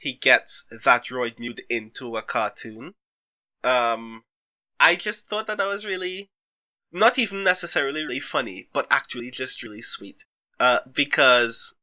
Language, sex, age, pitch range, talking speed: English, male, 20-39, 120-160 Hz, 140 wpm